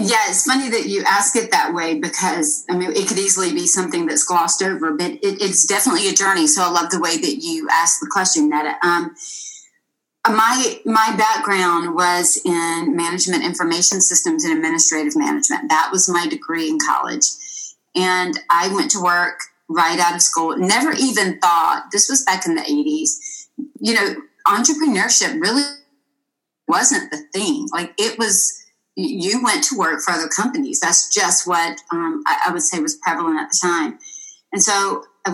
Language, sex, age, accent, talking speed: English, female, 30-49, American, 180 wpm